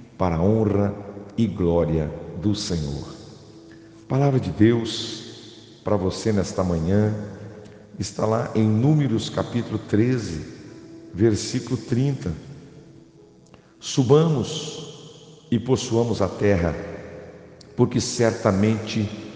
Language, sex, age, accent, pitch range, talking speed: English, male, 60-79, Brazilian, 100-125 Hz, 95 wpm